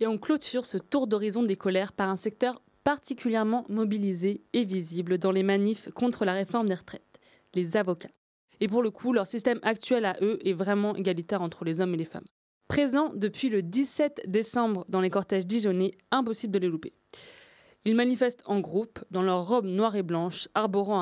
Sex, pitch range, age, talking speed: female, 185-235 Hz, 20-39, 190 wpm